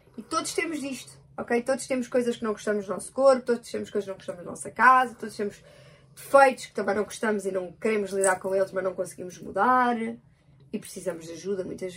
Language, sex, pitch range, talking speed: Portuguese, female, 185-245 Hz, 225 wpm